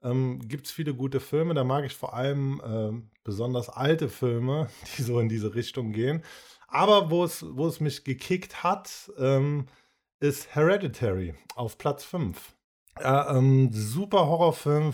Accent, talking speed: German, 155 wpm